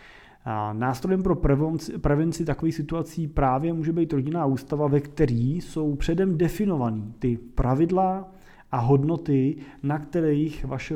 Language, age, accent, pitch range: Czech, 30-49, native, 125-165 Hz